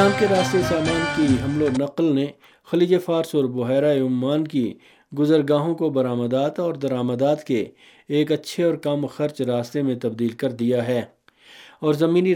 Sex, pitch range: male, 130-160 Hz